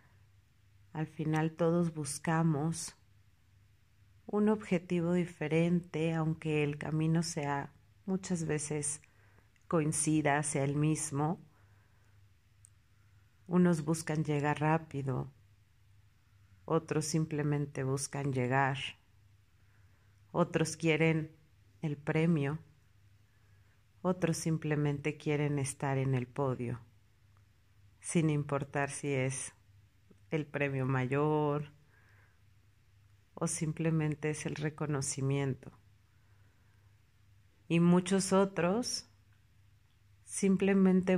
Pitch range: 105-160 Hz